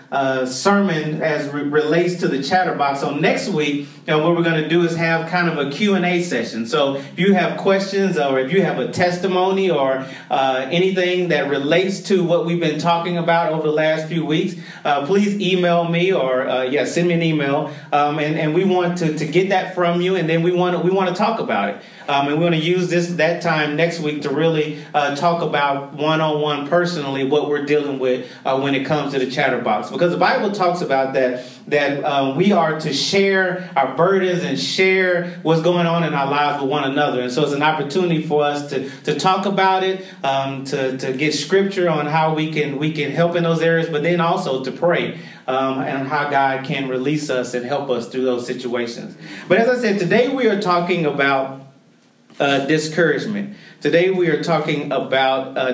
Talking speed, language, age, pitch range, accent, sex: 215 wpm, English, 30-49, 145-180 Hz, American, male